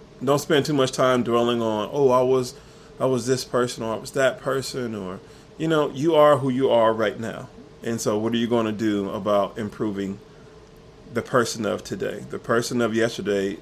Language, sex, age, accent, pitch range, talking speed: English, male, 20-39, American, 105-125 Hz, 205 wpm